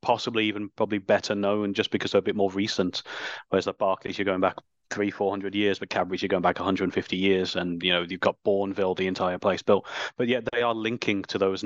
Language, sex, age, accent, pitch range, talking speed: English, male, 30-49, British, 100-115 Hz, 230 wpm